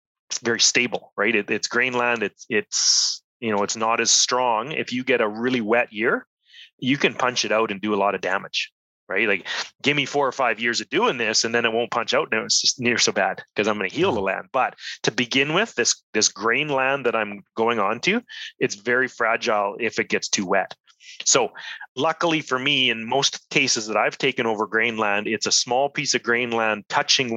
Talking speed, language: 230 wpm, English